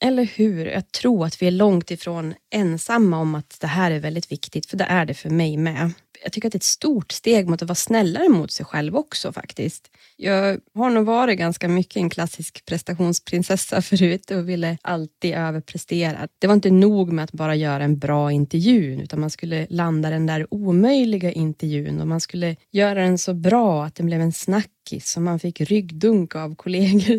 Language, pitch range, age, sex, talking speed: Swedish, 165-205 Hz, 20-39, female, 205 wpm